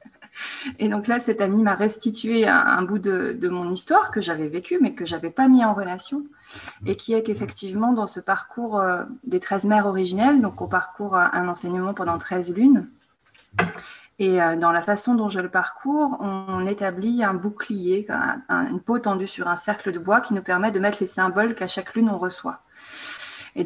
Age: 20-39